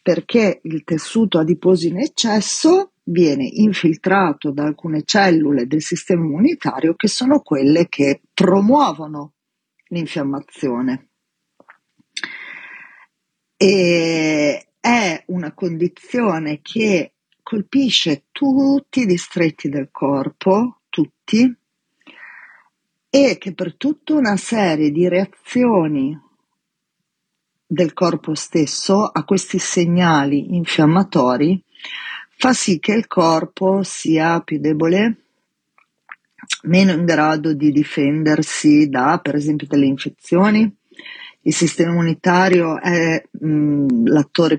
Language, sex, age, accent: Italian, female, 40-59, native